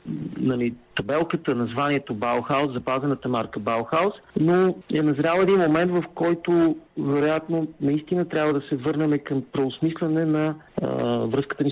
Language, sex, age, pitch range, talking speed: Bulgarian, male, 50-69, 135-170 Hz, 130 wpm